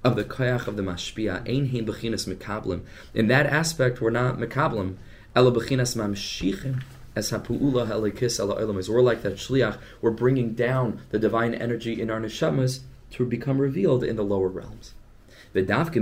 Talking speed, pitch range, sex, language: 165 wpm, 105-130 Hz, male, English